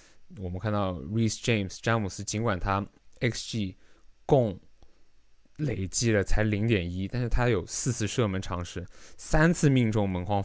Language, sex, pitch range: Chinese, male, 95-120 Hz